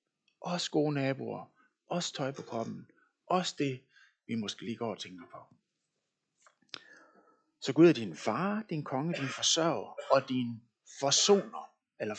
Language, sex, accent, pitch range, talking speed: Danish, male, native, 135-215 Hz, 145 wpm